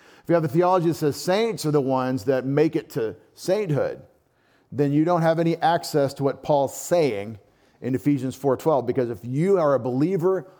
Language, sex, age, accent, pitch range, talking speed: English, male, 40-59, American, 135-175 Hz, 200 wpm